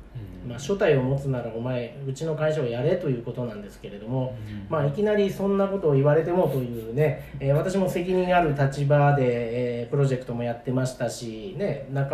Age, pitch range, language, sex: 40-59, 125-165 Hz, Japanese, male